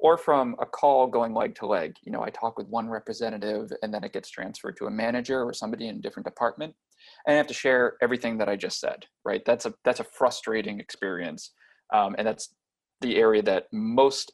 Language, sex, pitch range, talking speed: English, male, 115-160 Hz, 220 wpm